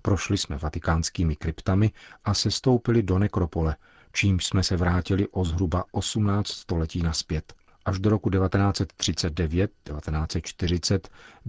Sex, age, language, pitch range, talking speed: male, 40-59, Czech, 85-100 Hz, 115 wpm